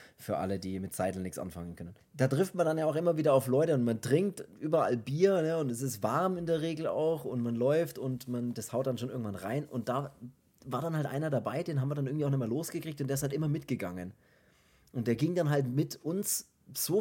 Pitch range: 120-155 Hz